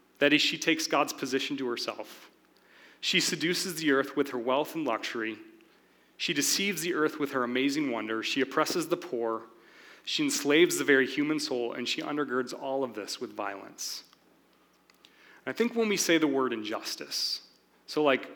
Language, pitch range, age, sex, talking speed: English, 135-210 Hz, 30-49, male, 175 wpm